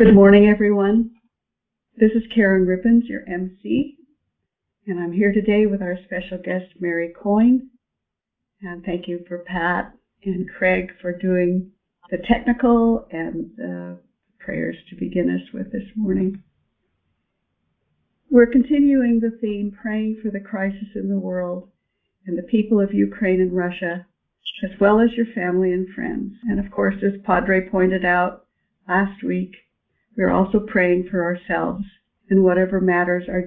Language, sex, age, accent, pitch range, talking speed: English, female, 50-69, American, 180-215 Hz, 150 wpm